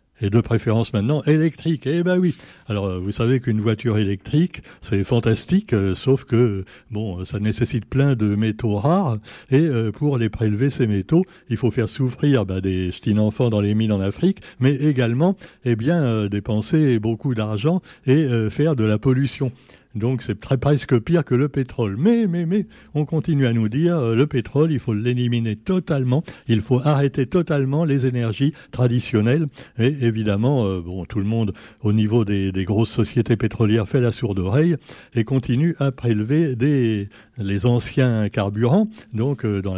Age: 60-79